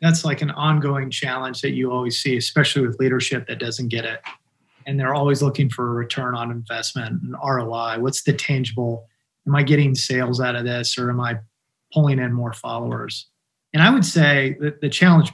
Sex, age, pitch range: male, 30-49, 125-150 Hz